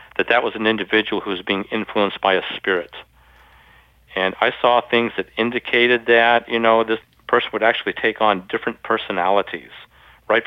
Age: 50-69